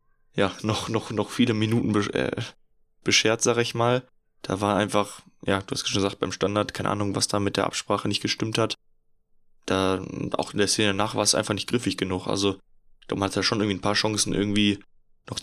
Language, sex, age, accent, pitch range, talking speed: German, male, 10-29, German, 95-105 Hz, 205 wpm